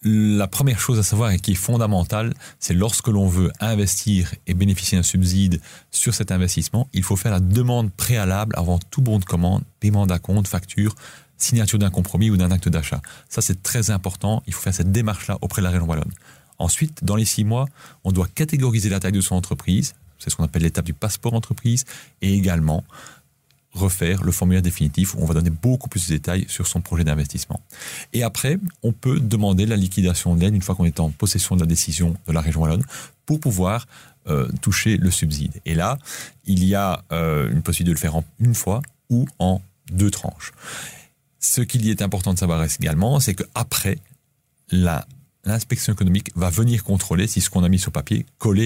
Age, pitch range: 30-49, 85-110 Hz